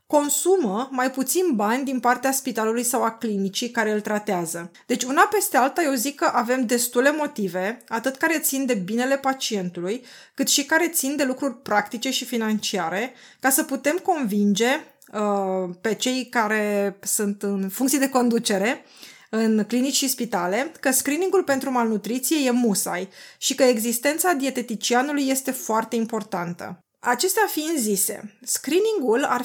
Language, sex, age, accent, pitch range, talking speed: Romanian, female, 20-39, native, 215-275 Hz, 150 wpm